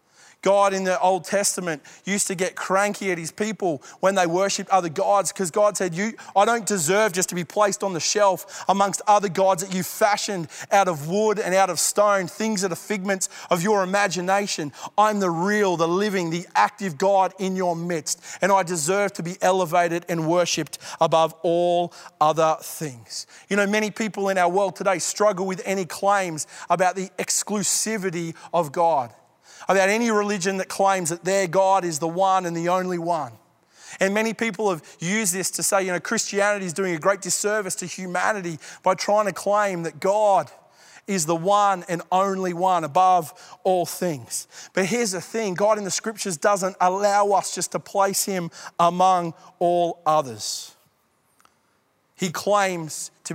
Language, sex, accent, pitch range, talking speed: English, male, Australian, 175-200 Hz, 180 wpm